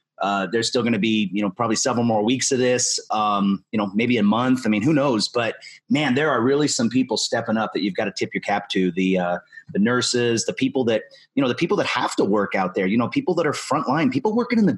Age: 30-49